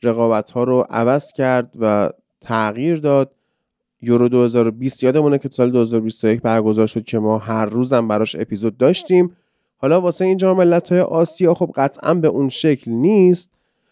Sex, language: male, Persian